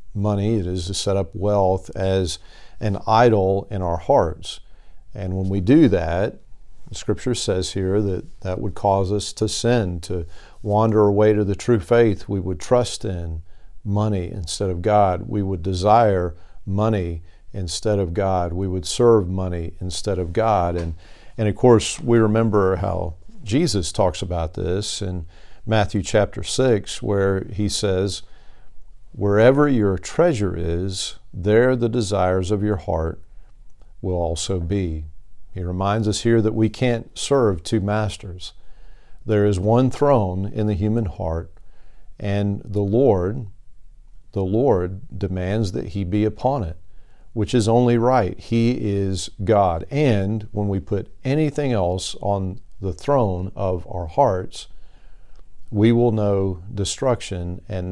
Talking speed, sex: 145 wpm, male